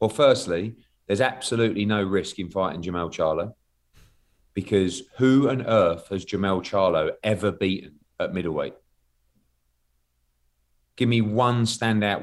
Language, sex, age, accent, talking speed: English, male, 30-49, British, 125 wpm